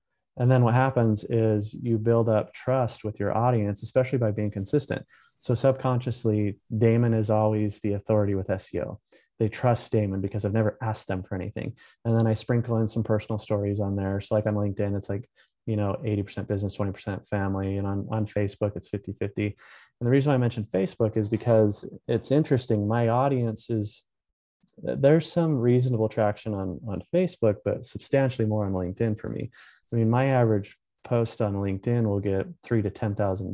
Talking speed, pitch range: 180 wpm, 105-120 Hz